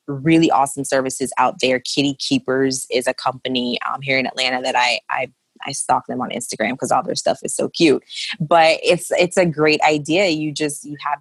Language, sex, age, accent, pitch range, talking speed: English, female, 20-39, American, 130-165 Hz, 210 wpm